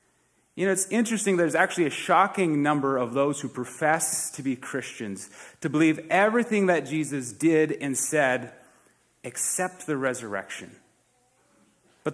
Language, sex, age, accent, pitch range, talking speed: English, male, 30-49, American, 135-185 Hz, 140 wpm